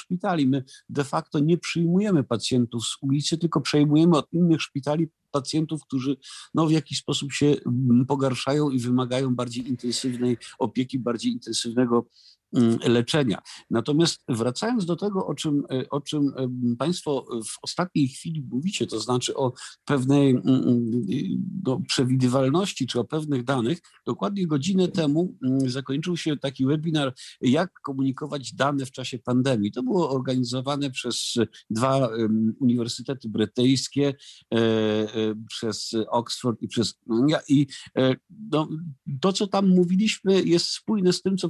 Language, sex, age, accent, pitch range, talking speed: Polish, male, 50-69, native, 125-160 Hz, 125 wpm